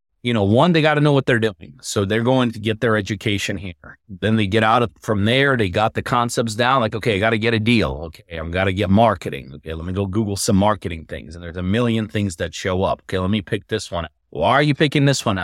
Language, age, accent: English, 30-49, American